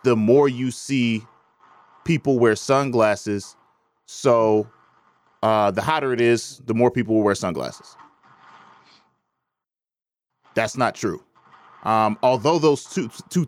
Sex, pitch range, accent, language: male, 115-150 Hz, American, English